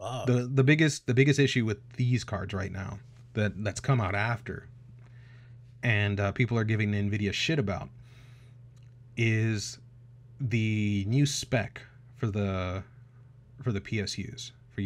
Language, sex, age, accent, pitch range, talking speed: English, male, 30-49, American, 105-125 Hz, 135 wpm